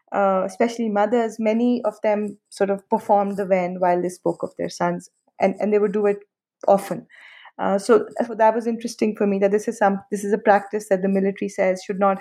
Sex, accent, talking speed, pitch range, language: female, Indian, 225 wpm, 195-225 Hz, English